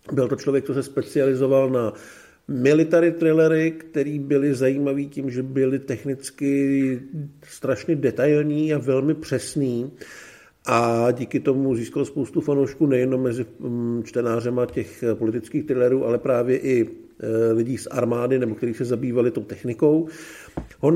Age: 50-69